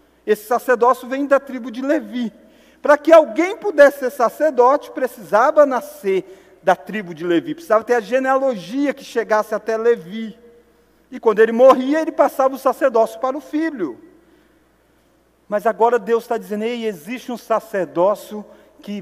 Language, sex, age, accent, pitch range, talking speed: Portuguese, male, 40-59, Brazilian, 205-265 Hz, 150 wpm